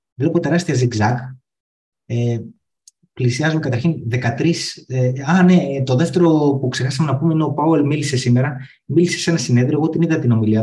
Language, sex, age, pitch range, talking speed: Greek, male, 20-39, 115-150 Hz, 170 wpm